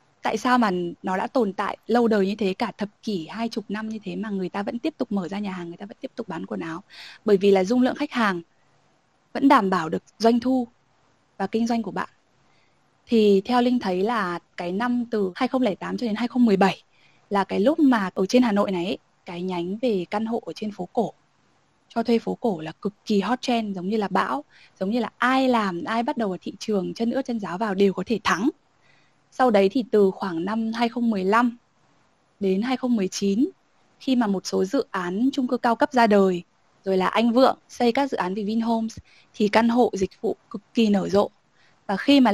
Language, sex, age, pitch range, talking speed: Vietnamese, female, 20-39, 190-240 Hz, 230 wpm